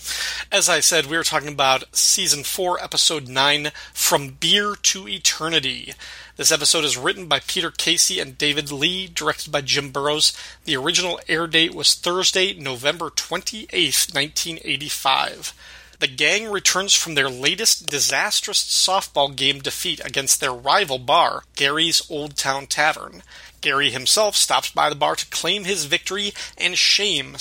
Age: 30-49